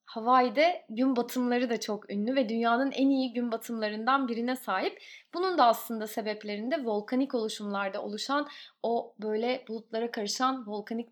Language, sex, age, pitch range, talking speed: Turkish, female, 20-39, 220-285 Hz, 140 wpm